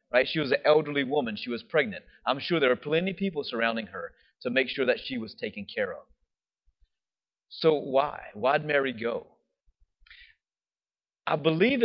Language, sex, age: English, male, 30-49